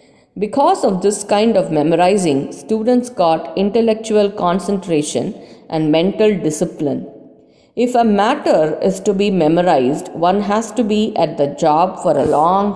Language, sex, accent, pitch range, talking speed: English, female, Indian, 160-215 Hz, 140 wpm